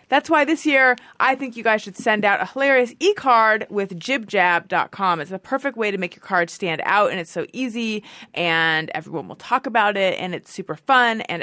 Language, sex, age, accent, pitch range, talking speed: English, female, 30-49, American, 170-230 Hz, 215 wpm